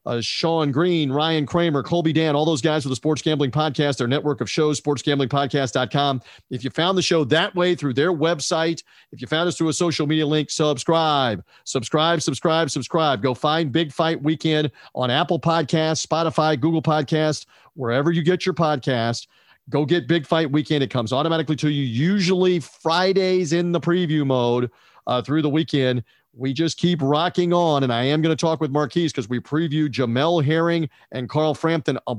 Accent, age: American, 40-59